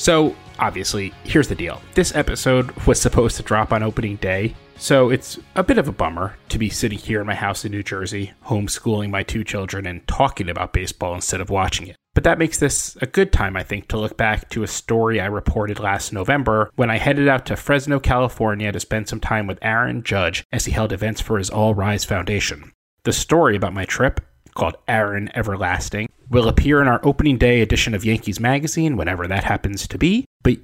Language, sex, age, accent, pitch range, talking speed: English, male, 30-49, American, 100-130 Hz, 215 wpm